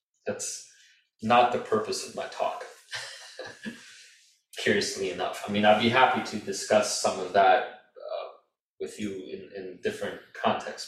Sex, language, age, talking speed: male, English, 30-49, 145 wpm